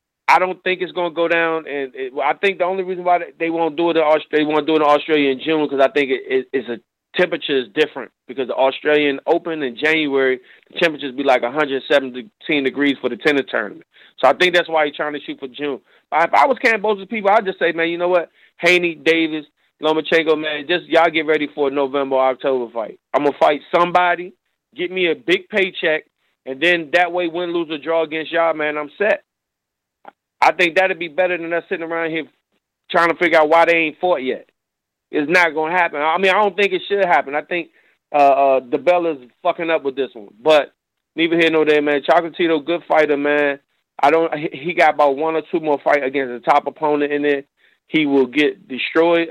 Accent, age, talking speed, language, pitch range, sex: American, 30-49, 230 wpm, English, 145-175 Hz, male